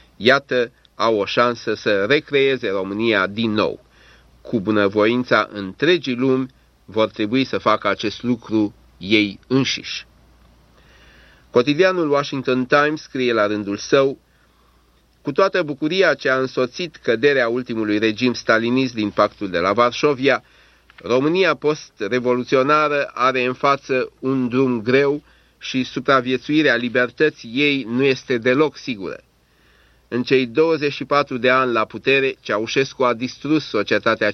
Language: Romanian